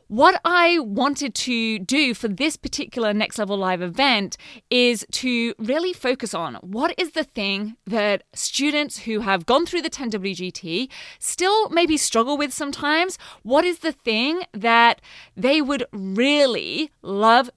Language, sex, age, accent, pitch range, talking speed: English, female, 20-39, British, 210-280 Hz, 150 wpm